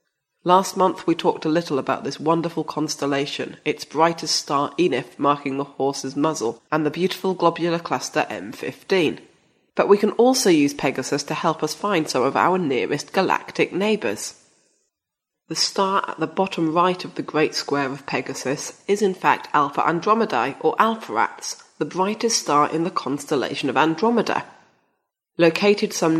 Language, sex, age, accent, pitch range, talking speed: English, female, 30-49, British, 150-195 Hz, 160 wpm